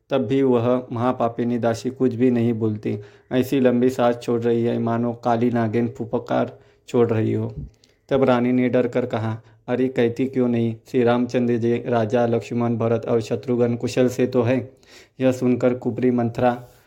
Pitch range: 115-125 Hz